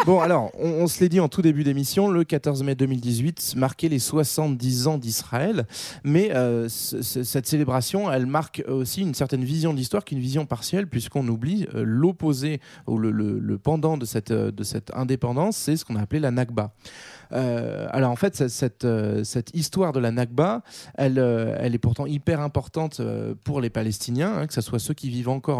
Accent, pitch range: French, 120-155 Hz